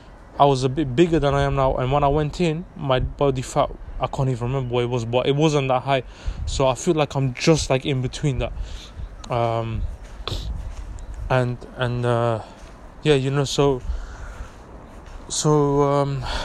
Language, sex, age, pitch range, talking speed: English, male, 20-39, 120-150 Hz, 180 wpm